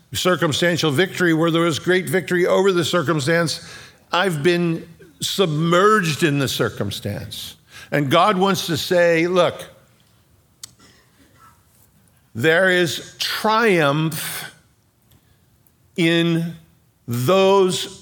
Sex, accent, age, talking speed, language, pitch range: male, American, 50-69, 90 wpm, English, 135-180 Hz